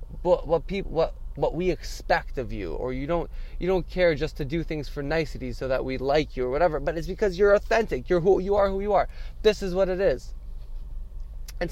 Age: 20-39